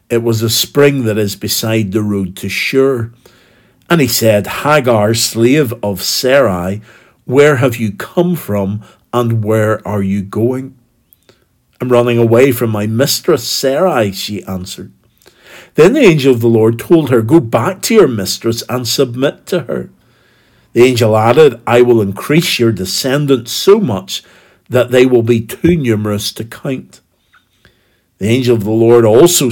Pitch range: 110-130 Hz